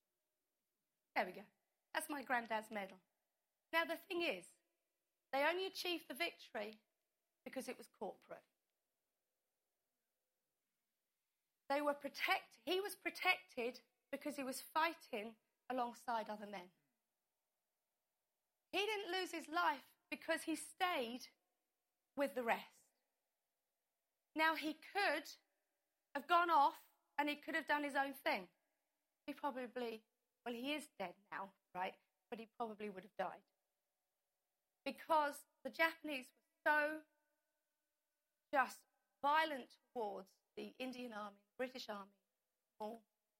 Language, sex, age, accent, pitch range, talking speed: English, female, 30-49, British, 230-310 Hz, 120 wpm